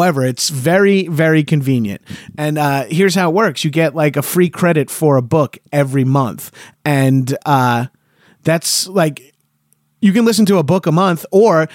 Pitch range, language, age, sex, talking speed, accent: 135-170 Hz, English, 30-49, male, 180 wpm, American